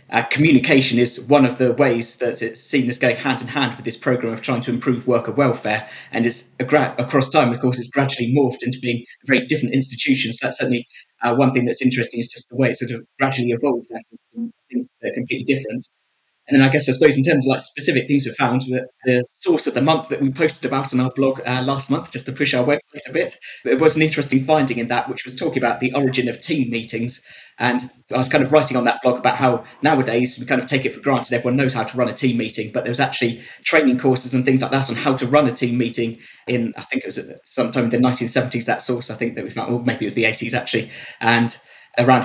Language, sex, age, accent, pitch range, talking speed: English, male, 20-39, British, 120-135 Hz, 255 wpm